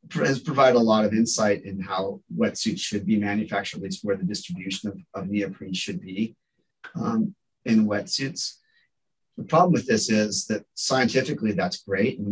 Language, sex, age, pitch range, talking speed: English, male, 30-49, 100-145 Hz, 170 wpm